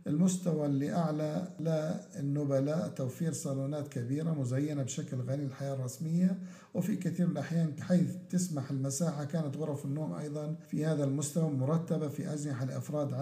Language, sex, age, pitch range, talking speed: Arabic, male, 50-69, 140-160 Hz, 135 wpm